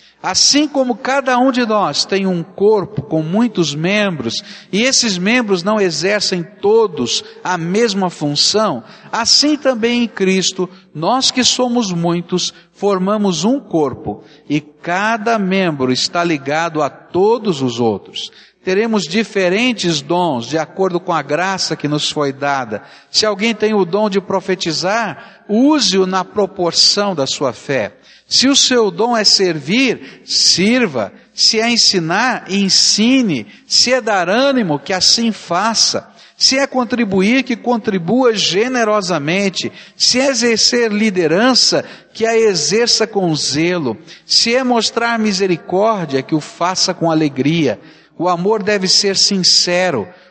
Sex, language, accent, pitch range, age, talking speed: male, Portuguese, Brazilian, 175-230 Hz, 60-79, 135 wpm